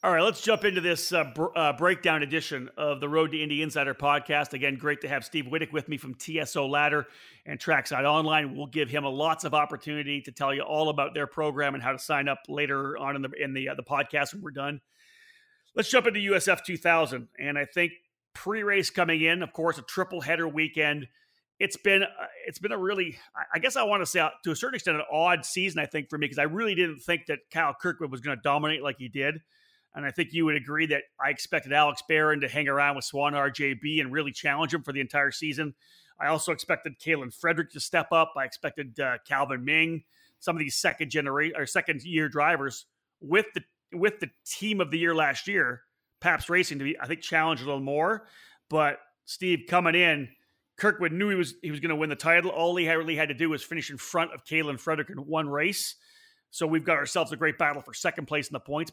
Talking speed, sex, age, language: 235 wpm, male, 40-59, English